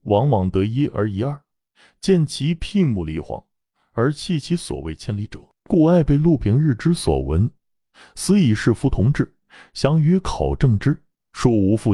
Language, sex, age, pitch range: Chinese, male, 30-49, 115-175 Hz